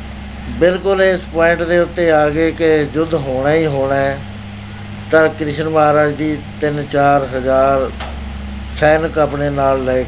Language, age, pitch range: Punjabi, 60-79, 105-155 Hz